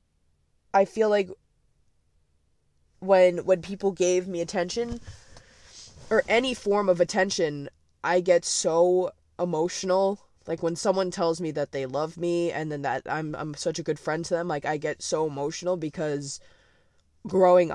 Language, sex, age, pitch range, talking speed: English, female, 20-39, 140-175 Hz, 150 wpm